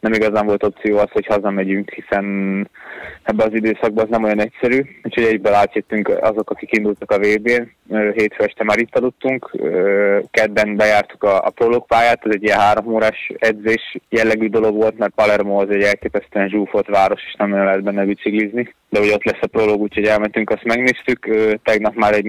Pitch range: 100-110 Hz